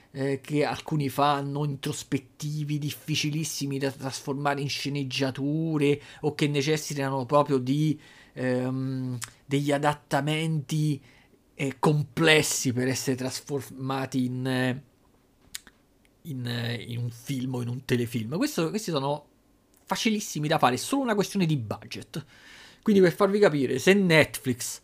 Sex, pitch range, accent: male, 130-160 Hz, native